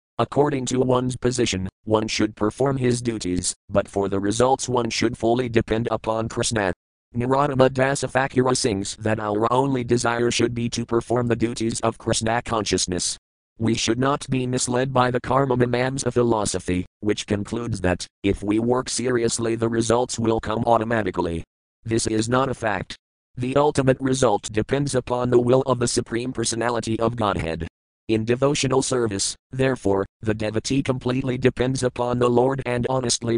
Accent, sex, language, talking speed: American, male, English, 160 wpm